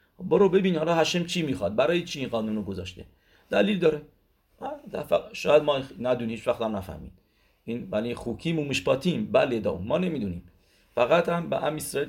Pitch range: 100-150 Hz